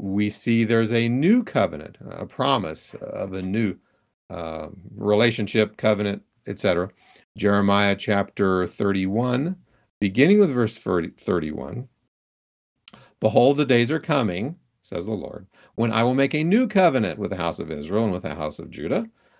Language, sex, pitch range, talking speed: English, male, 95-115 Hz, 150 wpm